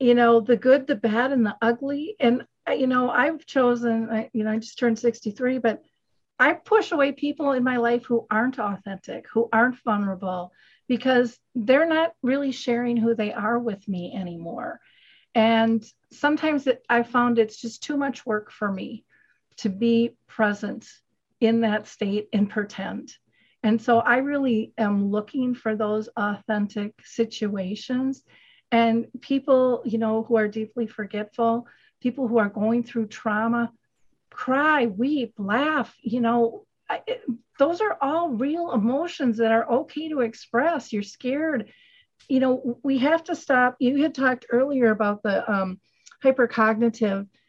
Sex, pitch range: female, 220-260 Hz